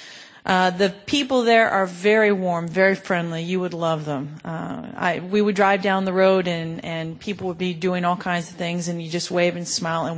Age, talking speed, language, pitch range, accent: 40-59, 225 wpm, English, 175-205 Hz, American